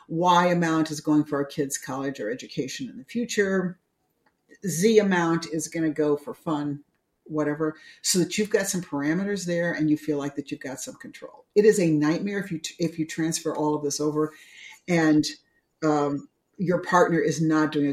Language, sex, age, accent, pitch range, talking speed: English, female, 50-69, American, 155-205 Hz, 200 wpm